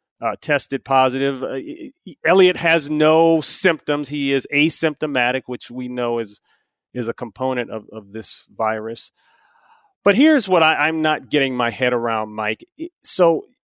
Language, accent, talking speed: English, American, 150 wpm